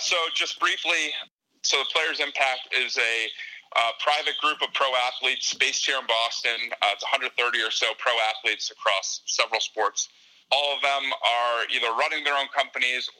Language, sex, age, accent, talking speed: English, male, 30-49, American, 175 wpm